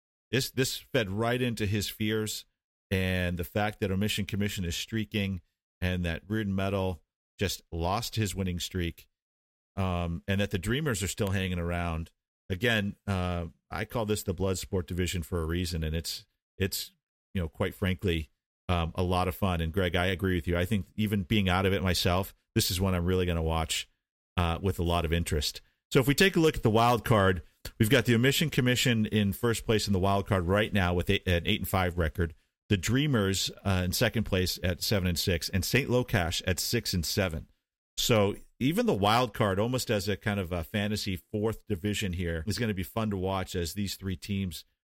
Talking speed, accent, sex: 210 wpm, American, male